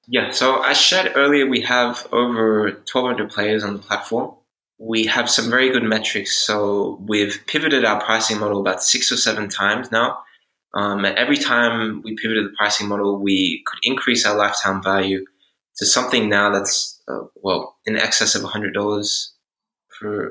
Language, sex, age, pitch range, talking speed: English, male, 20-39, 100-120 Hz, 175 wpm